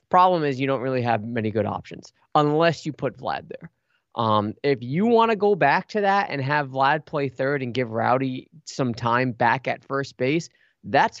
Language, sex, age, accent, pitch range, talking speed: English, male, 20-39, American, 135-175 Hz, 205 wpm